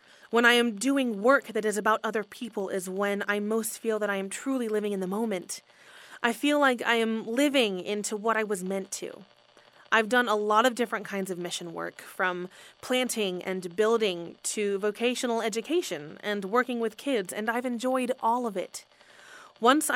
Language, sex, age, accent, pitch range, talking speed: English, female, 20-39, American, 185-235 Hz, 190 wpm